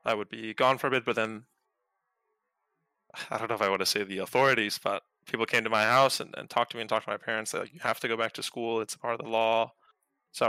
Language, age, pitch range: English, 20-39, 110-135 Hz